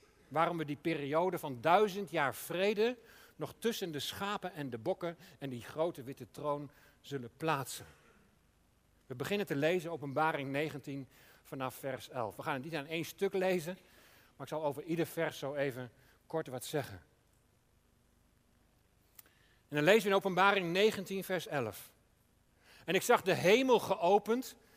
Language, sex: Dutch, male